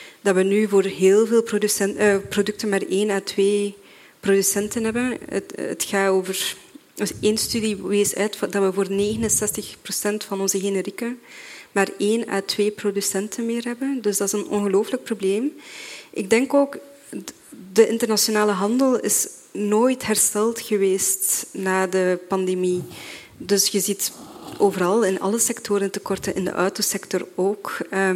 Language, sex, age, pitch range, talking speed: Dutch, female, 20-39, 195-220 Hz, 145 wpm